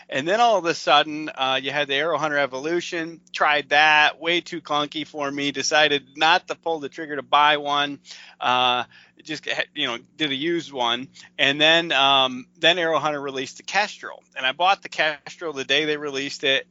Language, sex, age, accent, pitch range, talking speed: English, male, 30-49, American, 135-165 Hz, 200 wpm